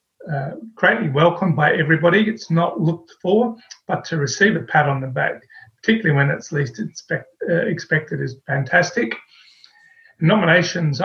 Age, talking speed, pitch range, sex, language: 40-59, 150 wpm, 145-190 Hz, male, English